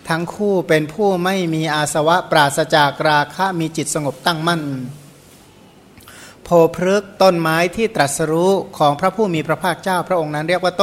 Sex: male